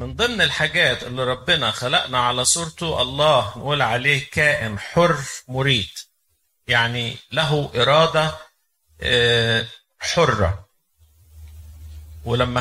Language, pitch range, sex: Arabic, 110-150 Hz, male